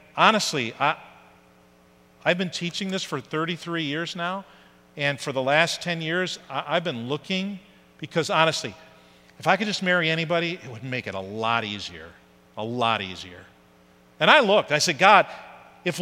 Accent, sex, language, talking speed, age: American, male, English, 160 wpm, 50-69